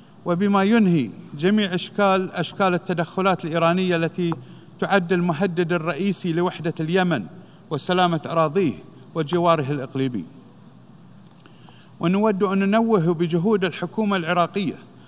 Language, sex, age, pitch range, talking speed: Arabic, male, 50-69, 170-195 Hz, 90 wpm